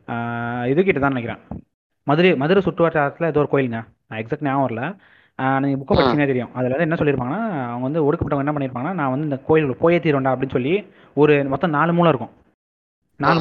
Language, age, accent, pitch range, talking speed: Tamil, 30-49, native, 135-165 Hz, 165 wpm